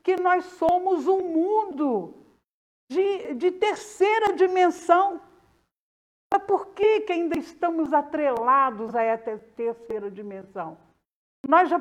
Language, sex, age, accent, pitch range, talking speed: Portuguese, female, 60-79, Brazilian, 230-335 Hz, 110 wpm